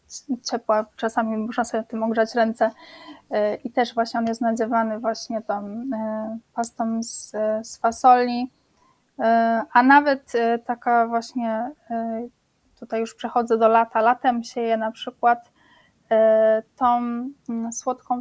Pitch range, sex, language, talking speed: 225-245 Hz, female, Polish, 110 wpm